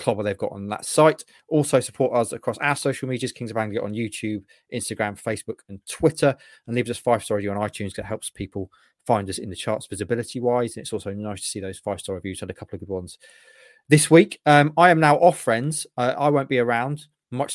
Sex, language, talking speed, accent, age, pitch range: male, English, 235 wpm, British, 30-49, 105-135 Hz